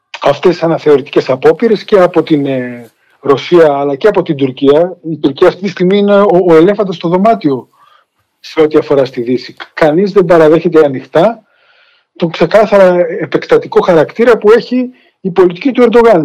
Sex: male